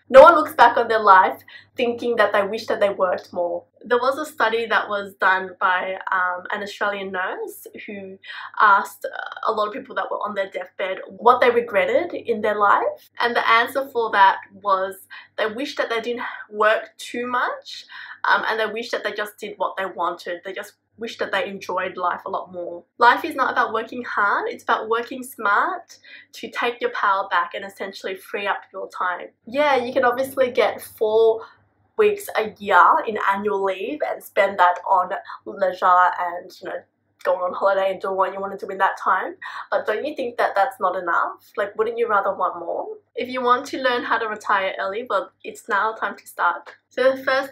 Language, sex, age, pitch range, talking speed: English, female, 20-39, 195-250 Hz, 210 wpm